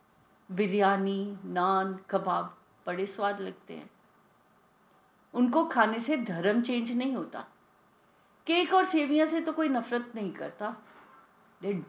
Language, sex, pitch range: English, female, 195-250 Hz